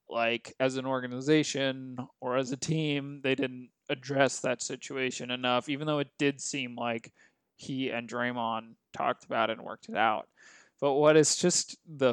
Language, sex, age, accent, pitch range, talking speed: English, male, 20-39, American, 130-160 Hz, 175 wpm